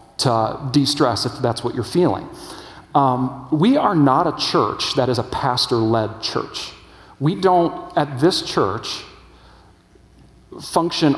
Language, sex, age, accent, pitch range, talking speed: English, male, 40-59, American, 115-140 Hz, 130 wpm